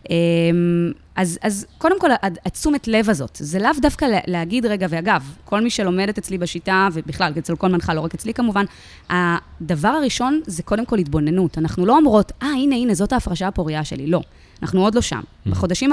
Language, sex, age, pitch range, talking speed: Hebrew, female, 20-39, 165-235 Hz, 185 wpm